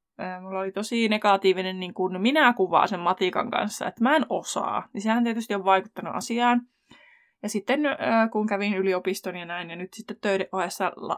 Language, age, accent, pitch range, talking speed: Finnish, 20-39, native, 195-260 Hz, 175 wpm